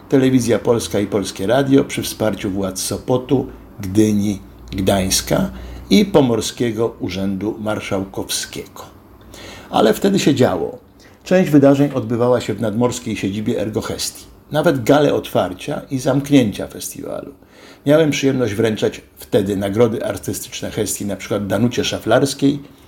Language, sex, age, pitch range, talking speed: Polish, male, 60-79, 100-135 Hz, 120 wpm